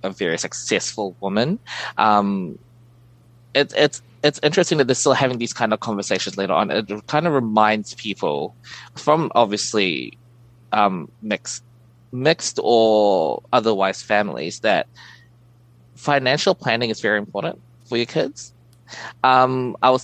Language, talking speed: English, 130 wpm